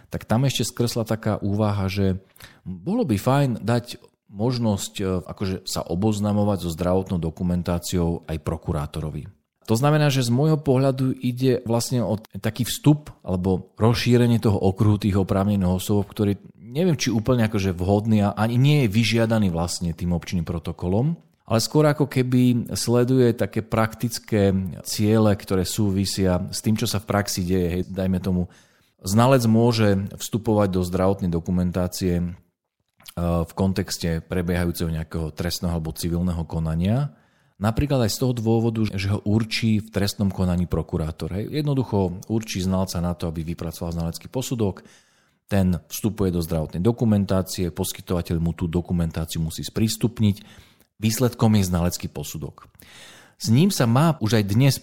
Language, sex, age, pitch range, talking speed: Slovak, male, 40-59, 90-115 Hz, 140 wpm